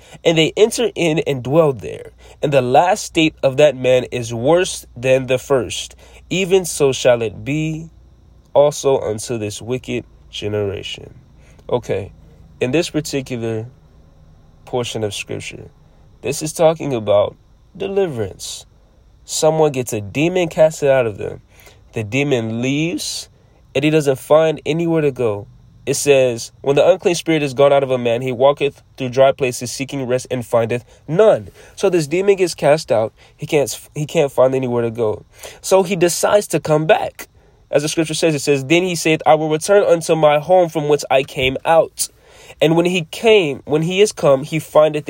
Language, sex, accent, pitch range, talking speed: English, male, American, 125-165 Hz, 175 wpm